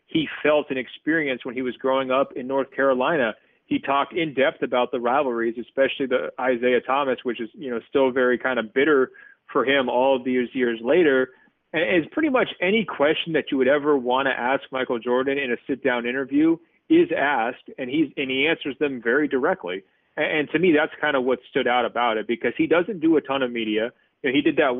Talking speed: 225 wpm